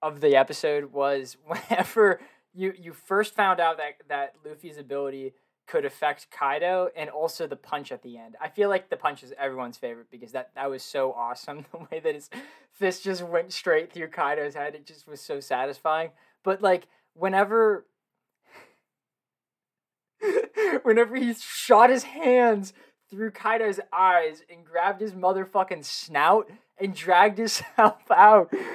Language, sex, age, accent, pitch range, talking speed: English, male, 20-39, American, 135-205 Hz, 155 wpm